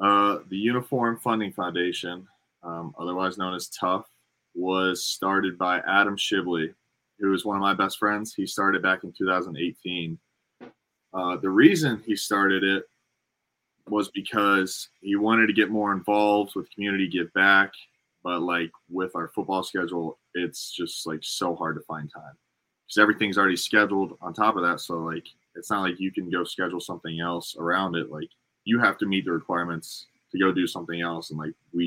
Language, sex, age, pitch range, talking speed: English, male, 20-39, 85-100 Hz, 180 wpm